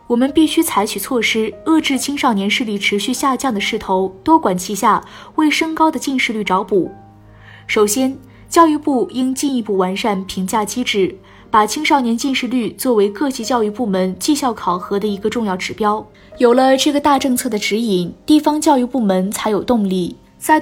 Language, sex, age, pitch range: Chinese, female, 20-39, 205-270 Hz